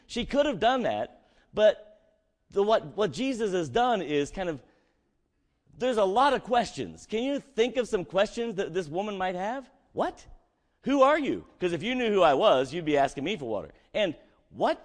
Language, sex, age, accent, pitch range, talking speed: English, male, 50-69, American, 145-230 Hz, 200 wpm